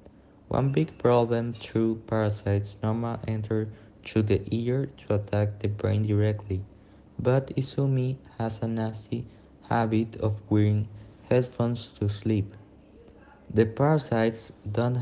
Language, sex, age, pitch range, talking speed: English, male, 20-39, 105-115 Hz, 115 wpm